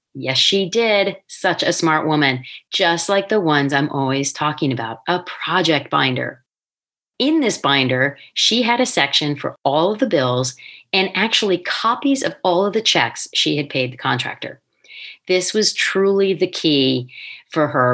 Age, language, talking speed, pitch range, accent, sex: 40-59, English, 165 wpm, 140-190 Hz, American, female